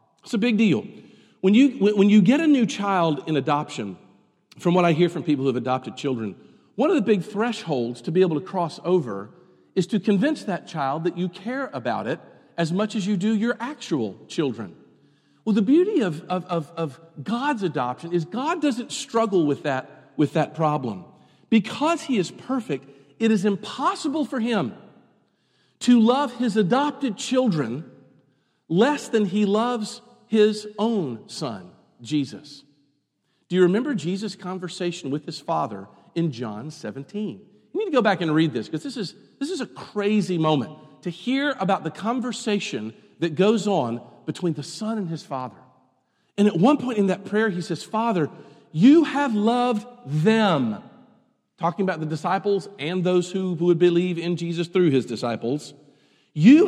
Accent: American